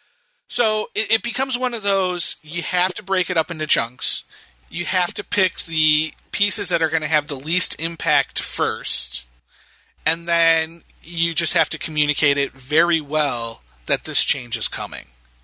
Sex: male